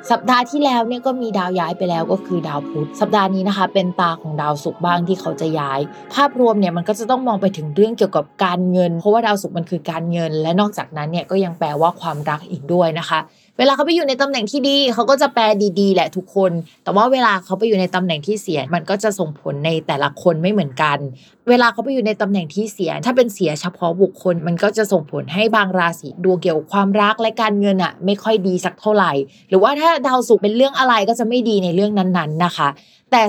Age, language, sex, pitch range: 20-39, Thai, female, 170-225 Hz